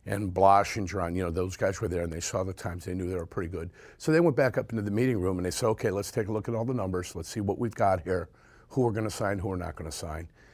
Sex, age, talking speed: male, 50-69, 335 wpm